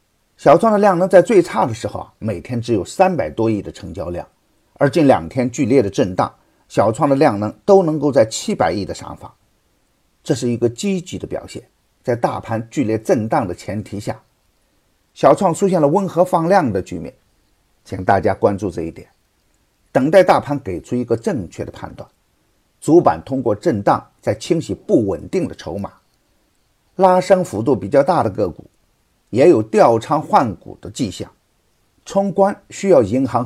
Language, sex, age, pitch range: Chinese, male, 50-69, 110-180 Hz